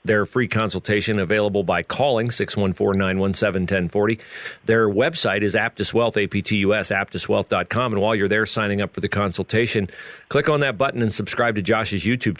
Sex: male